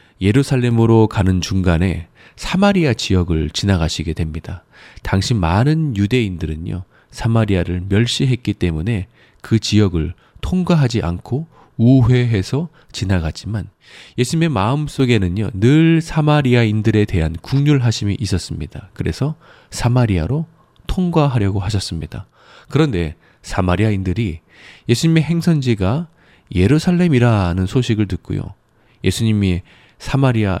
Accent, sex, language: native, male, Korean